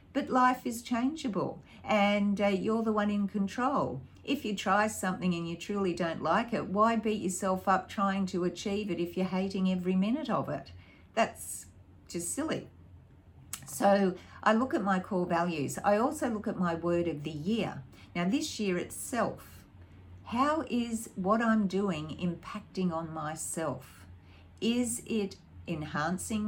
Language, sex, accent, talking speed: English, female, Australian, 160 wpm